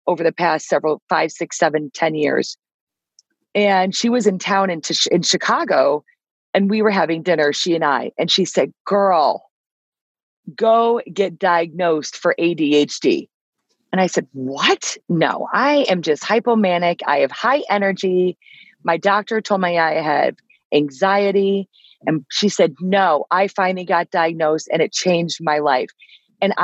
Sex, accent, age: female, American, 40-59